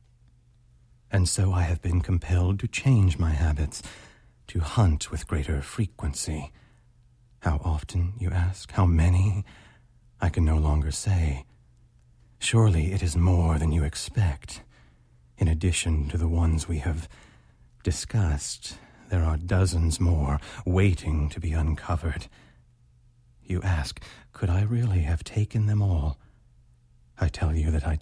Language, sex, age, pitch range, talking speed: English, male, 40-59, 75-95 Hz, 135 wpm